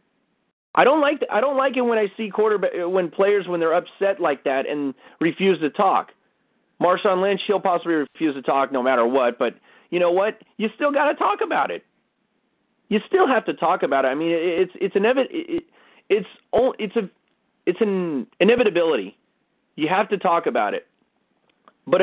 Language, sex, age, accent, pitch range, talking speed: English, male, 30-49, American, 160-215 Hz, 195 wpm